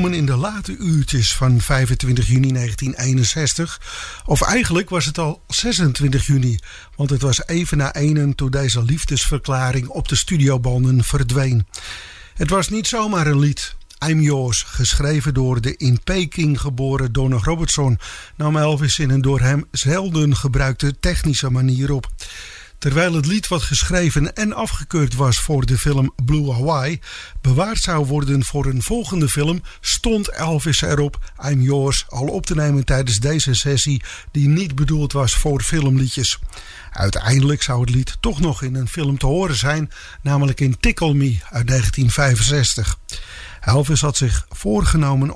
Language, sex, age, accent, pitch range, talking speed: English, male, 50-69, Dutch, 130-150 Hz, 150 wpm